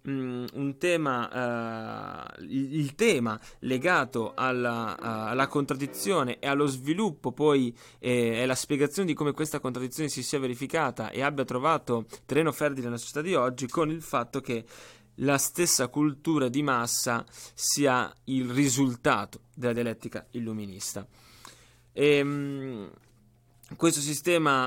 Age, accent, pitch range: 20-39, native, 120-155 Hz